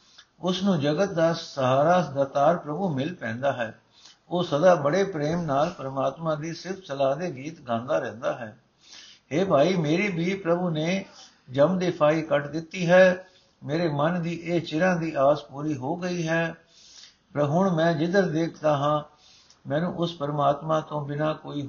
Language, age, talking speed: Punjabi, 60-79, 165 wpm